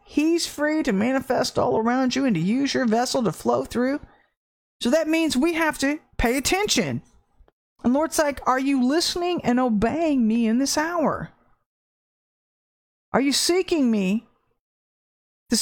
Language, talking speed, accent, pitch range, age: English, 155 wpm, American, 225-300 Hz, 40-59